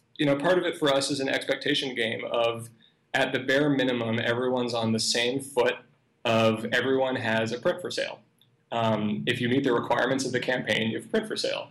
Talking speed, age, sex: 195 wpm, 20-39, male